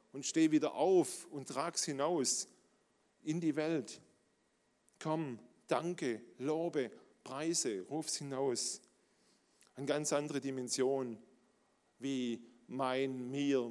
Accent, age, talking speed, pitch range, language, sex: German, 40-59, 105 wpm, 130-170 Hz, German, male